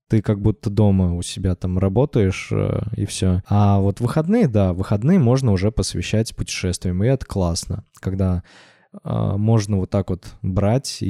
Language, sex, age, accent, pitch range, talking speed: Russian, male, 20-39, native, 100-120 Hz, 160 wpm